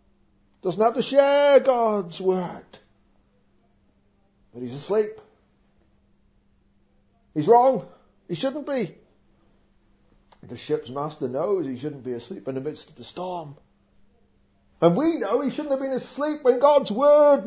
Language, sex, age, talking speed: English, male, 50-69, 135 wpm